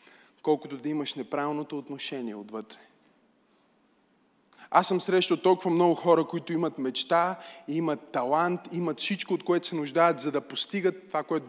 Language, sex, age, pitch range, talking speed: Bulgarian, male, 20-39, 155-190 Hz, 145 wpm